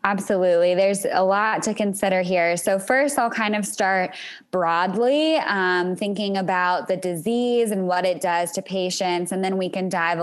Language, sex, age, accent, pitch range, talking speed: English, female, 10-29, American, 180-215 Hz, 175 wpm